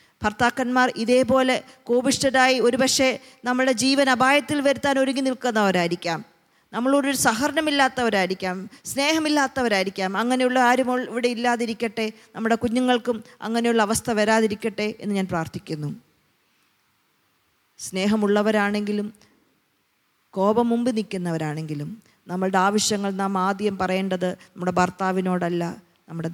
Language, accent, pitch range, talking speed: Malayalam, native, 190-240 Hz, 85 wpm